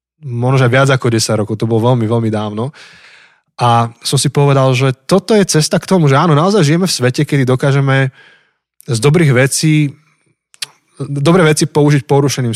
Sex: male